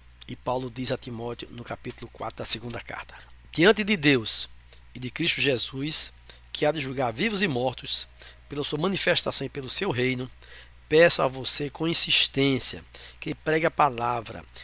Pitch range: 110-155 Hz